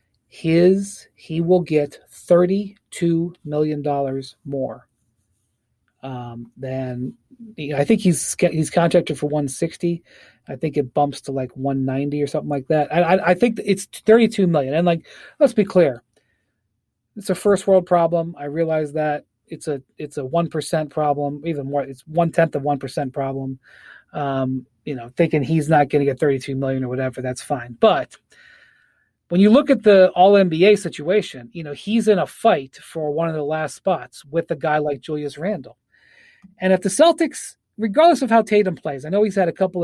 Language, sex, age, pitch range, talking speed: English, male, 30-49, 140-185 Hz, 175 wpm